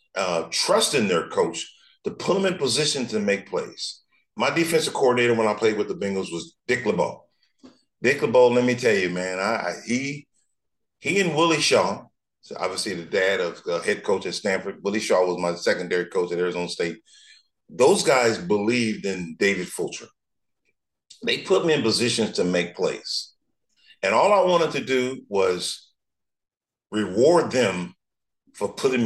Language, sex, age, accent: English, male, 40-59, American